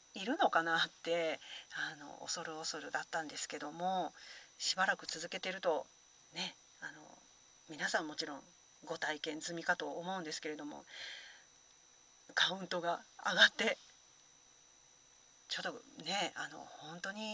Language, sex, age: Japanese, female, 40-59